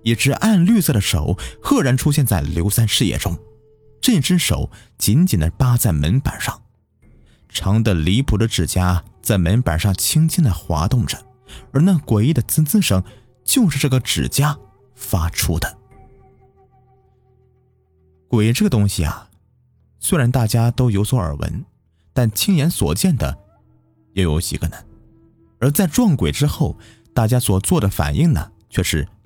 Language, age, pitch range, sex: Chinese, 30-49, 90-125 Hz, male